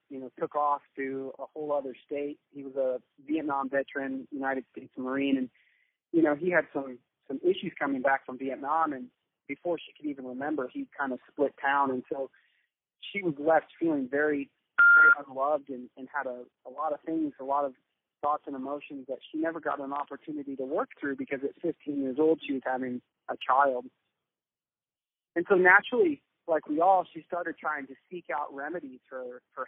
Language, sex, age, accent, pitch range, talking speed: English, male, 30-49, American, 135-165 Hz, 195 wpm